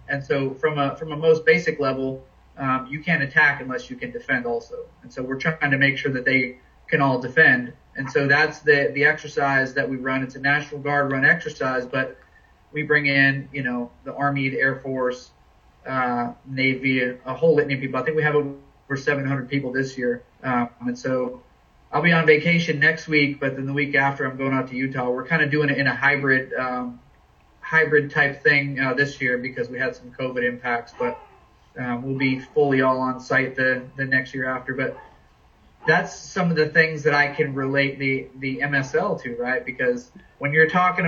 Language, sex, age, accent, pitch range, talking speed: English, male, 30-49, American, 130-150 Hz, 210 wpm